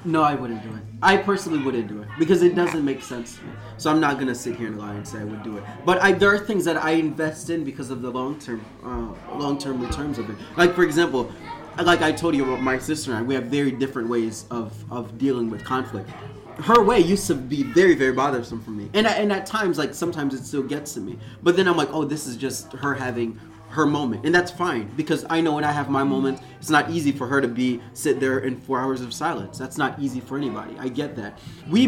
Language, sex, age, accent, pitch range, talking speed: English, male, 20-39, American, 125-165 Hz, 265 wpm